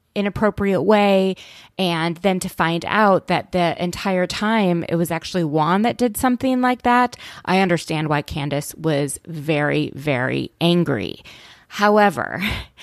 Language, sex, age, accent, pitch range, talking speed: English, female, 20-39, American, 160-205 Hz, 135 wpm